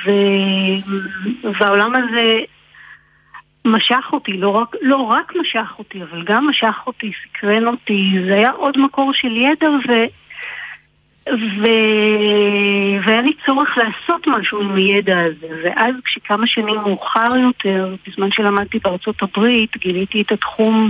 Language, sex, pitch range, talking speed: Hebrew, female, 195-235 Hz, 125 wpm